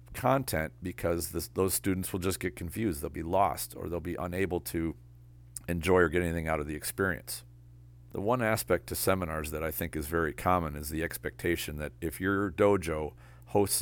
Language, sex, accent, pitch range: English, male, American, 75-90 Hz